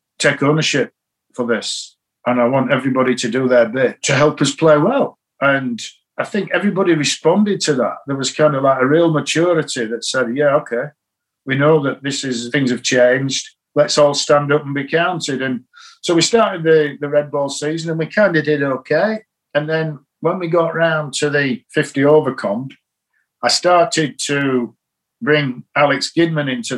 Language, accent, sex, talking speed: English, British, male, 190 wpm